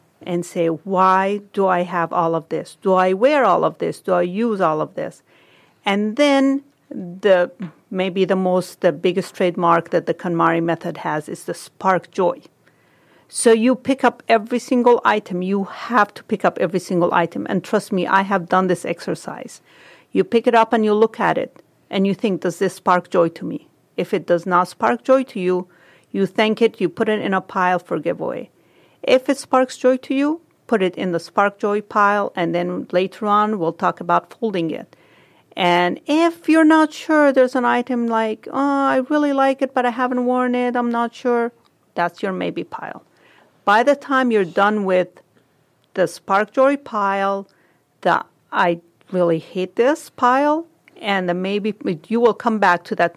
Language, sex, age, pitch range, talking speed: English, female, 40-59, 180-245 Hz, 195 wpm